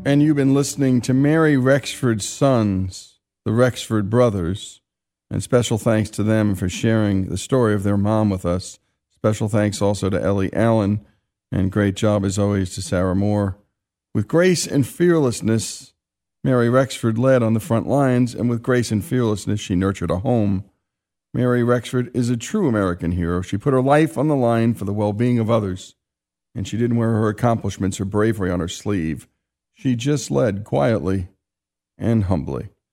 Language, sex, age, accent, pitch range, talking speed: English, male, 50-69, American, 95-130 Hz, 175 wpm